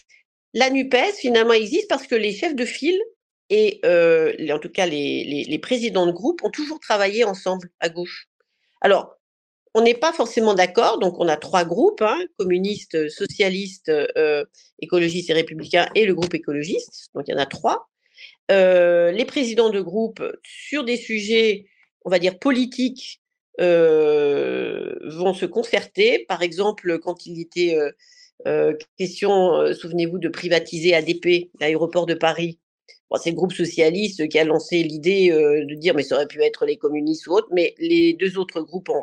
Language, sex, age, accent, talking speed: French, female, 40-59, French, 175 wpm